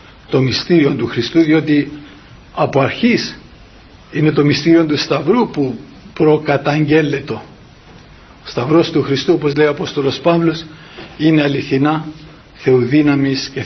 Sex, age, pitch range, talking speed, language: male, 60-79, 135-160 Hz, 120 wpm, Greek